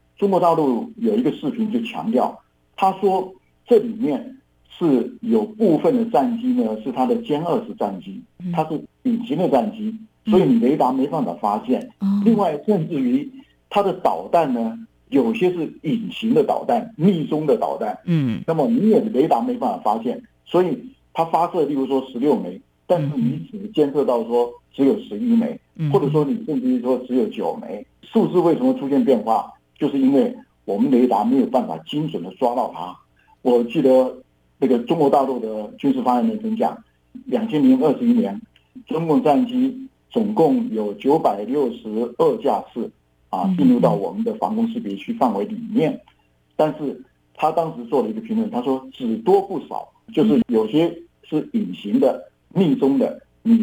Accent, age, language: native, 50-69, Chinese